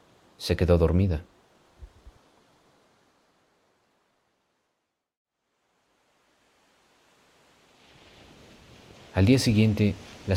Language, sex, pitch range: English, male, 80-100 Hz